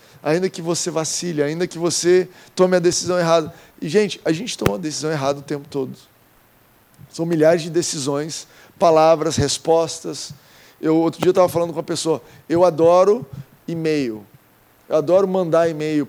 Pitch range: 155-190 Hz